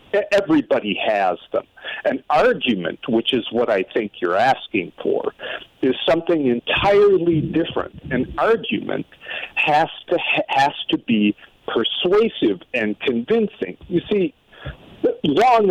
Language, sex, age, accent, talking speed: English, male, 50-69, American, 115 wpm